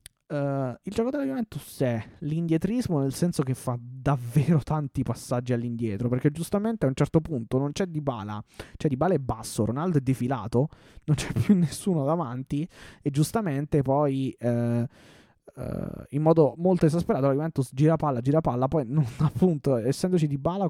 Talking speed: 160 wpm